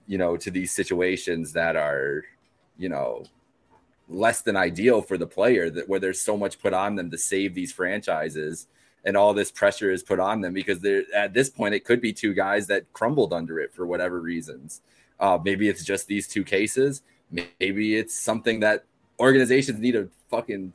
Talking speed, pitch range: 195 wpm, 95-130 Hz